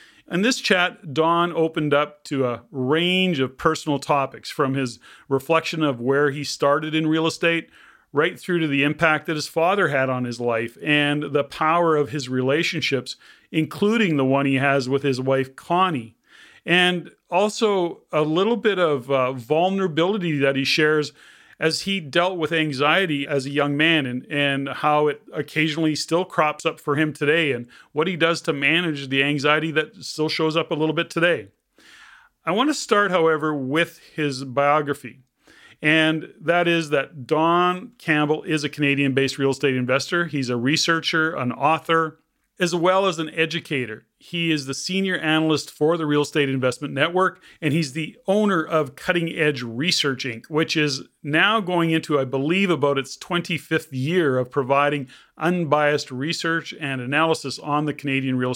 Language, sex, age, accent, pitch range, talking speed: English, male, 40-59, American, 140-165 Hz, 170 wpm